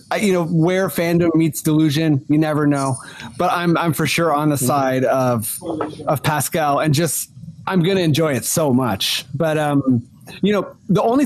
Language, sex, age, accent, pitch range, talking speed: English, male, 30-49, American, 140-175 Hz, 180 wpm